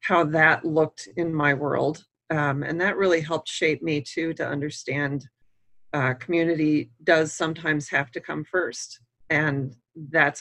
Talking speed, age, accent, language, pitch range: 150 wpm, 40-59, American, English, 145-165 Hz